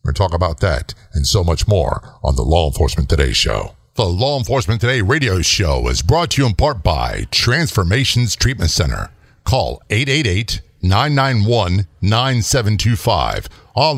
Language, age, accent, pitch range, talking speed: English, 50-69, American, 95-130 Hz, 155 wpm